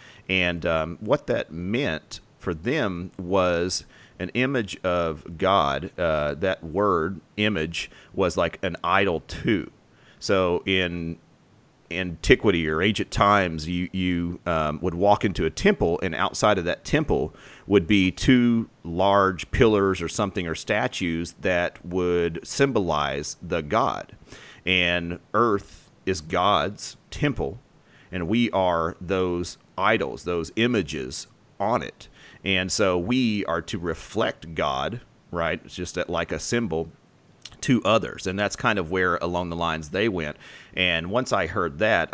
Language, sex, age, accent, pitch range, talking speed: English, male, 40-59, American, 85-100 Hz, 140 wpm